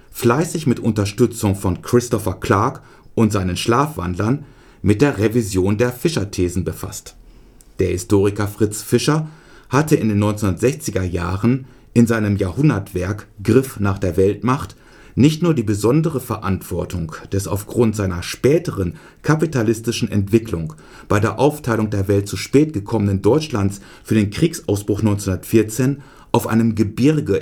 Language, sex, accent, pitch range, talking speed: German, male, German, 100-135 Hz, 125 wpm